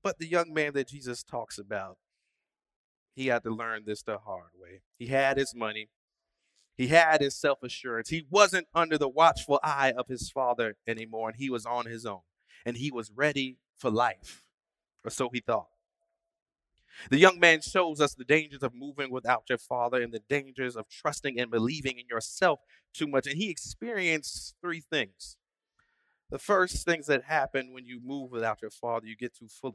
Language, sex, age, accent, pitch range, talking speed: English, male, 30-49, American, 125-165 Hz, 190 wpm